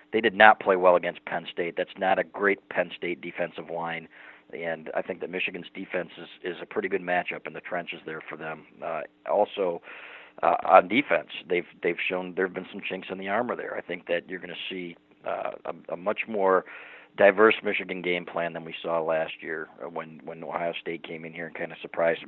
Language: English